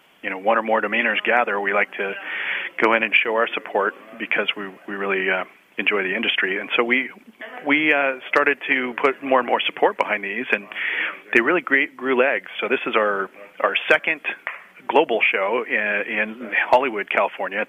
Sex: male